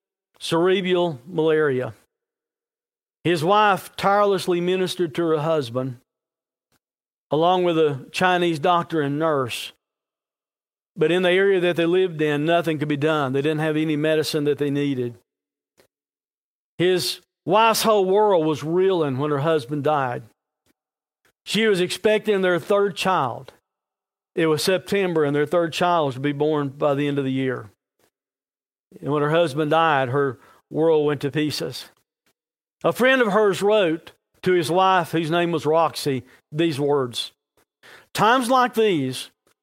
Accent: American